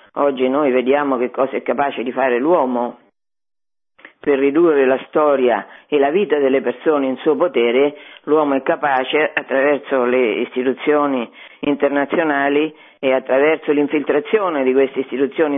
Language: Italian